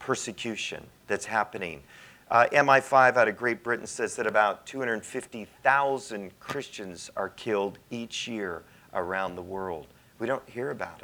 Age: 40-59